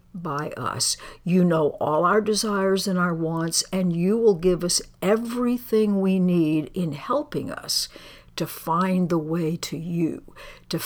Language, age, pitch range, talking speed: English, 60-79, 160-195 Hz, 155 wpm